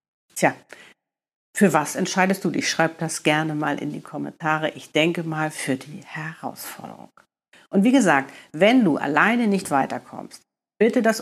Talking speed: 155 wpm